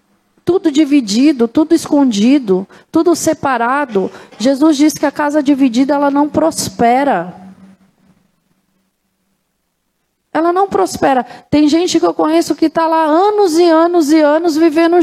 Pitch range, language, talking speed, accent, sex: 270-345 Hz, Portuguese, 130 wpm, Brazilian, female